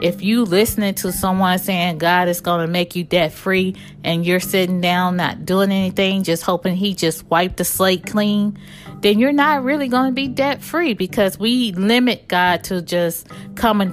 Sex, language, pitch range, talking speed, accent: female, English, 165-195 Hz, 195 wpm, American